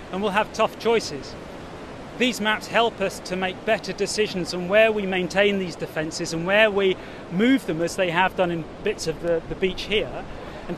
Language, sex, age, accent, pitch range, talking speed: English, male, 30-49, British, 180-215 Hz, 200 wpm